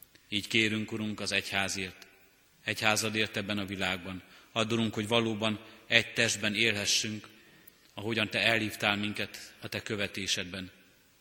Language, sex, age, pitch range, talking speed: Hungarian, male, 30-49, 95-110 Hz, 120 wpm